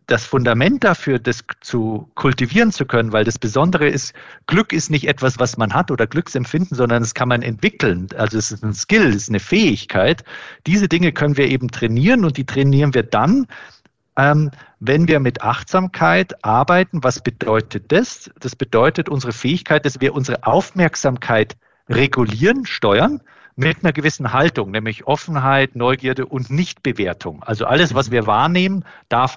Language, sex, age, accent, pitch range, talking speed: German, male, 50-69, German, 115-155 Hz, 160 wpm